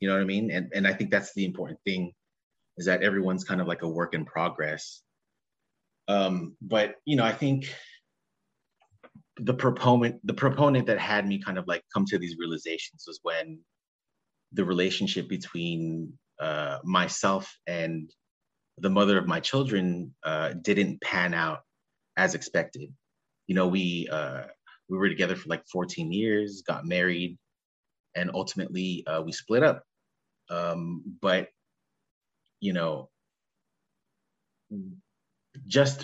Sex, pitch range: male, 85-105 Hz